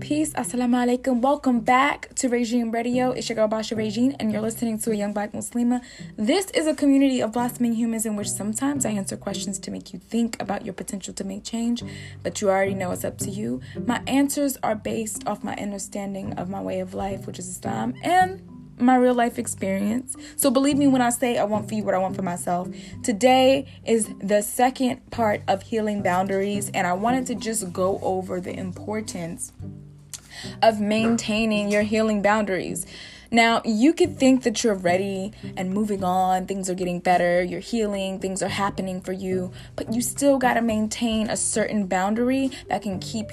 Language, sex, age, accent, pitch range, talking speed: English, female, 10-29, American, 195-245 Hz, 195 wpm